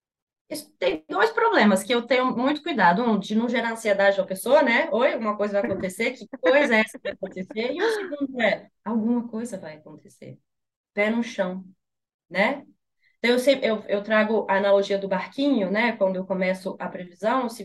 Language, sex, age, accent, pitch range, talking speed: Portuguese, female, 20-39, Brazilian, 200-255 Hz, 195 wpm